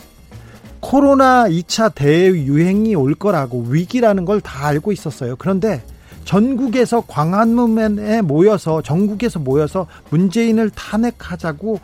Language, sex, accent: Korean, male, native